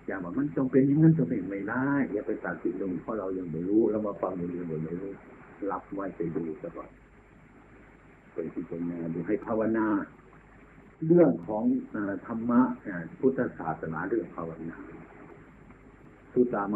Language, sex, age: Thai, male, 60-79